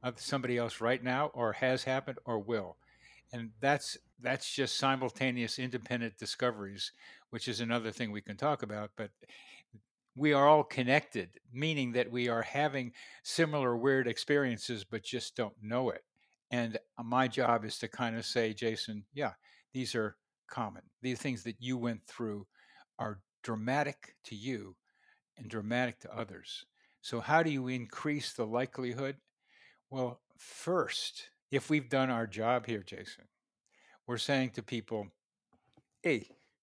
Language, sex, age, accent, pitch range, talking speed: English, male, 60-79, American, 115-135 Hz, 150 wpm